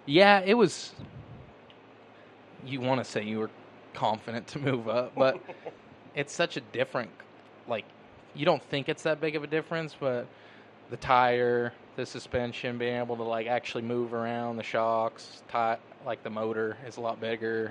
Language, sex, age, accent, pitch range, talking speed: English, male, 20-39, American, 115-130 Hz, 170 wpm